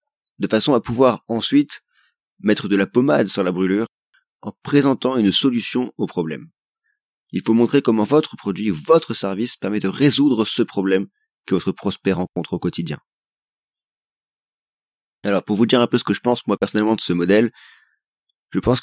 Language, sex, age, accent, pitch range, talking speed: French, male, 30-49, French, 100-120 Hz, 175 wpm